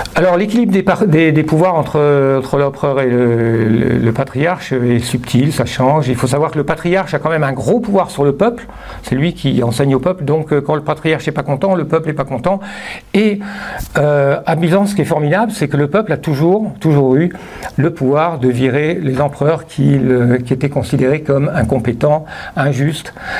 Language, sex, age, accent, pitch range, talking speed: French, male, 60-79, French, 135-180 Hz, 205 wpm